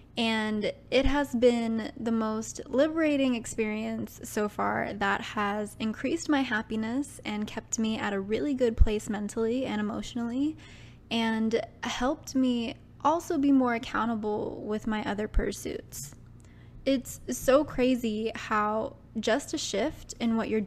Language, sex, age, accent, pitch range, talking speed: English, female, 10-29, American, 215-255 Hz, 135 wpm